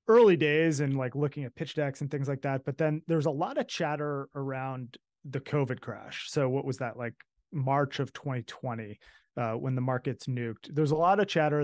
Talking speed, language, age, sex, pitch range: 210 wpm, English, 30-49, male, 120-150 Hz